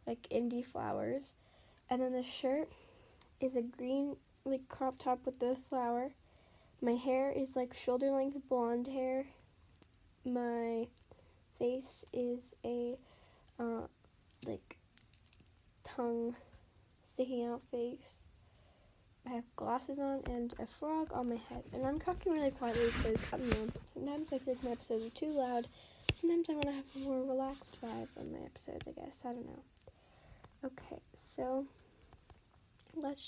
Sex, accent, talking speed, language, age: female, American, 145 wpm, English, 10-29